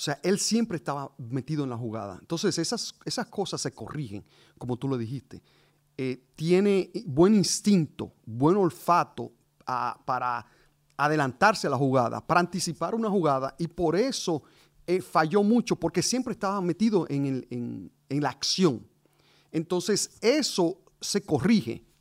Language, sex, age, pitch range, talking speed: English, male, 40-59, 125-175 Hz, 140 wpm